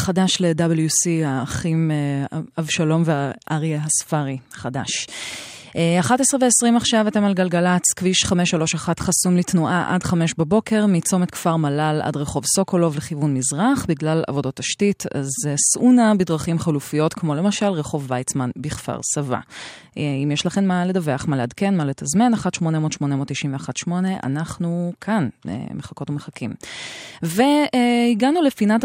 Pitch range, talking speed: 145-195 Hz, 120 wpm